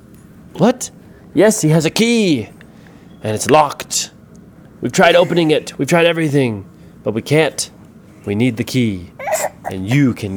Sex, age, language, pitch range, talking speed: male, 30-49, English, 110-160 Hz, 150 wpm